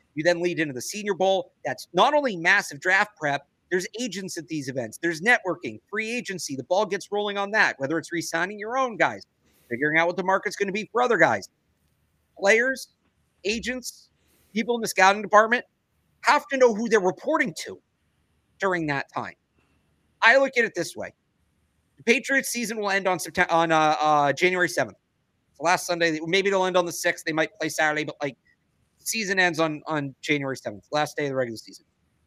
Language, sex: English, male